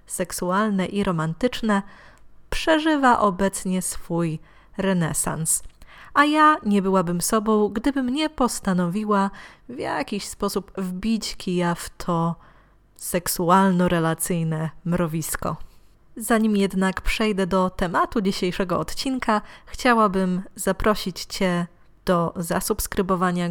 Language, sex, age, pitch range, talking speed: Polish, female, 20-39, 180-215 Hz, 90 wpm